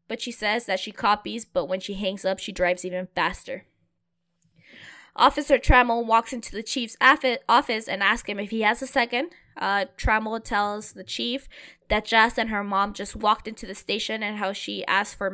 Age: 10-29